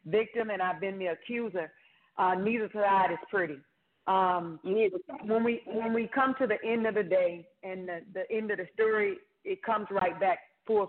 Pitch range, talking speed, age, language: 195-235 Hz, 195 wpm, 40-59, English